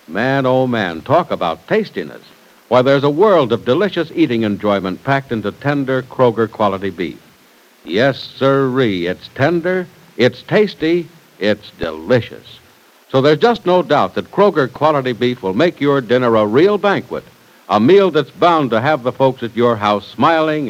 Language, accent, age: English, American, 60-79